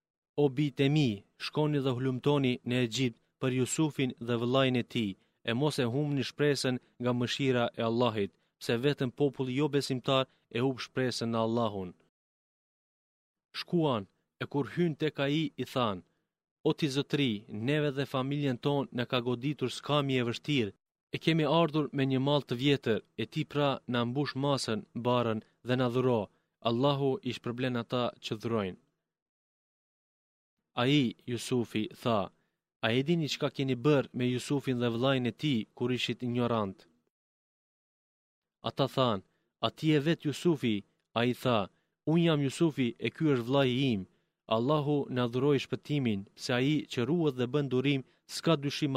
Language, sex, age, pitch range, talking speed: Greek, male, 30-49, 120-145 Hz, 160 wpm